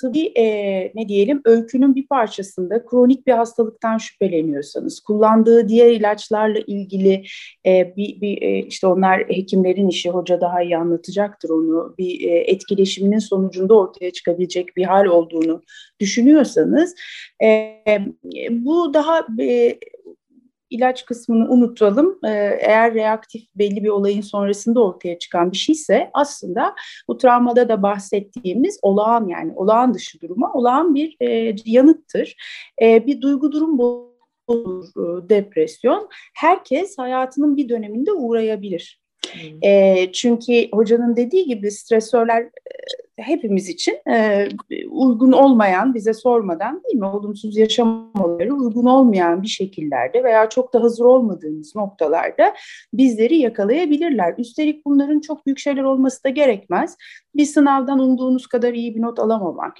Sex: female